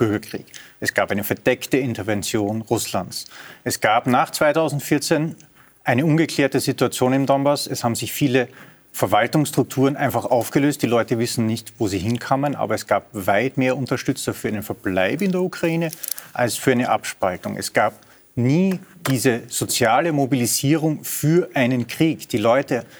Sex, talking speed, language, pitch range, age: male, 150 wpm, German, 115-145 Hz, 40-59